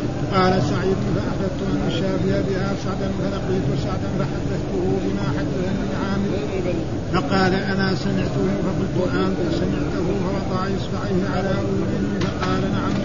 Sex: male